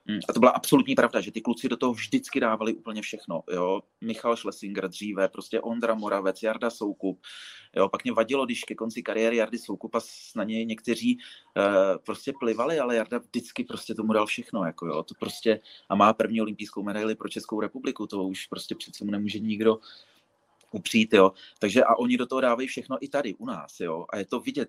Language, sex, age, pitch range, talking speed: Czech, male, 30-49, 105-120 Hz, 205 wpm